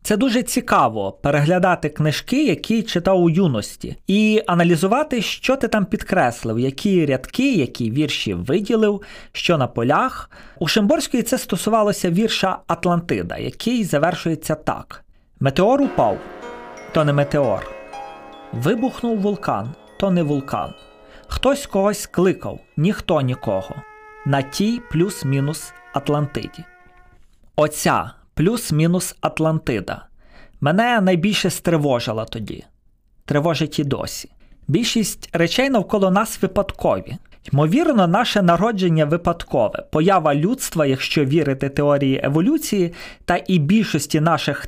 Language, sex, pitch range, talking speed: Ukrainian, male, 145-210 Hz, 105 wpm